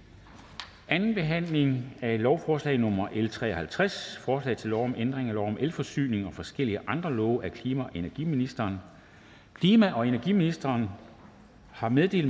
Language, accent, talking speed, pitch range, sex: Danish, native, 135 wpm, 105-145 Hz, male